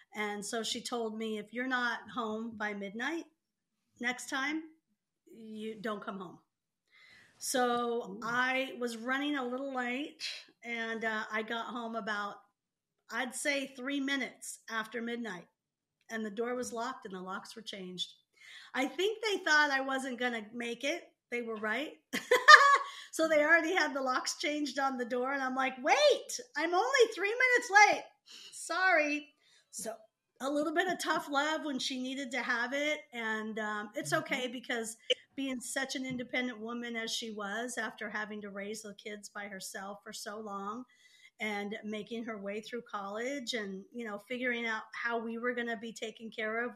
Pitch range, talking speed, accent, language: 220-275 Hz, 175 wpm, American, English